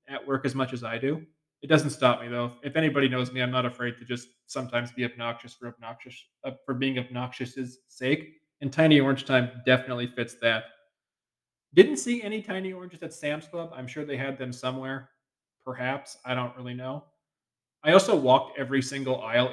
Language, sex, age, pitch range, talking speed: English, male, 20-39, 125-145 Hz, 195 wpm